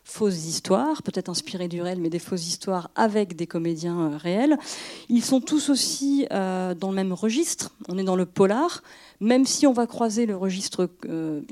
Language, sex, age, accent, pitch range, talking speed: French, female, 40-59, French, 180-230 Hz, 190 wpm